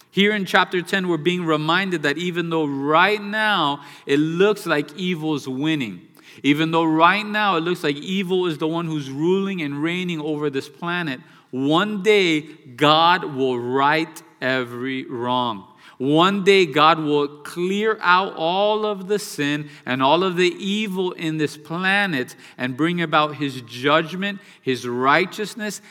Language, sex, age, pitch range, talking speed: English, male, 40-59, 145-180 Hz, 155 wpm